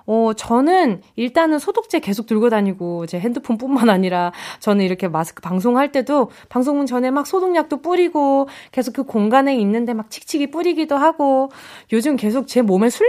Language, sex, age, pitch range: Korean, female, 20-39, 200-275 Hz